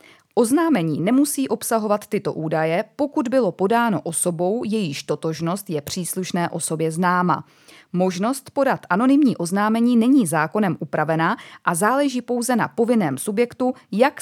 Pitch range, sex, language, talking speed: 170-230 Hz, female, Czech, 120 wpm